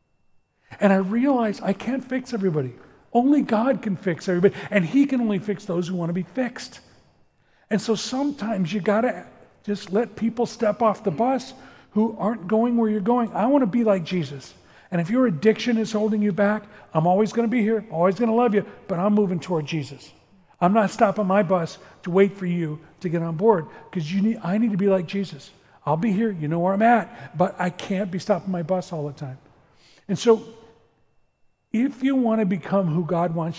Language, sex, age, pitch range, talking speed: English, male, 40-59, 175-225 Hz, 215 wpm